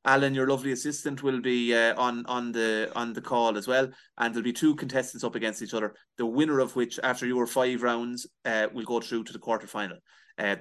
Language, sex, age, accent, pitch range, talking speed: English, male, 30-49, Irish, 115-130 Hz, 225 wpm